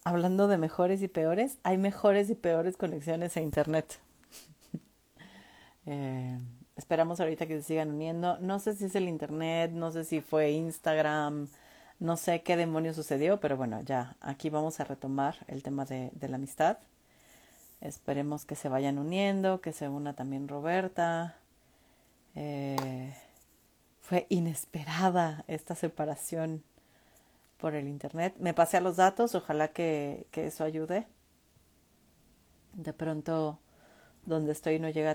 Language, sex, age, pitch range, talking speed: Spanish, female, 40-59, 150-175 Hz, 140 wpm